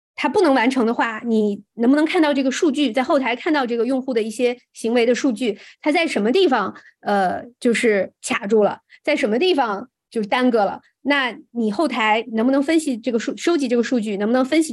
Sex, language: female, Chinese